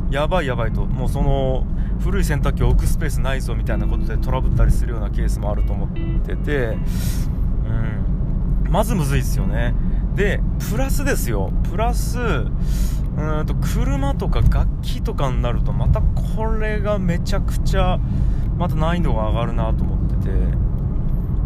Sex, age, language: male, 20-39, Japanese